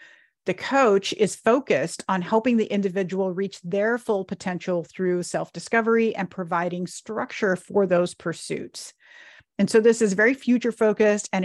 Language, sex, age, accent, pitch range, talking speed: English, female, 40-59, American, 185-220 Hz, 145 wpm